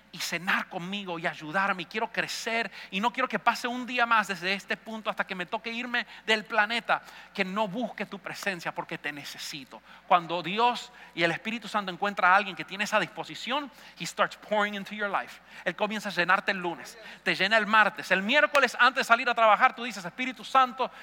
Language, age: English, 40-59